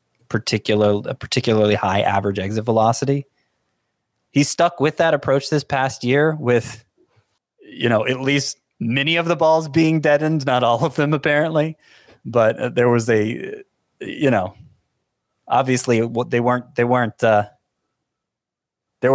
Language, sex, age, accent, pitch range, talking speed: English, male, 30-49, American, 105-140 Hz, 140 wpm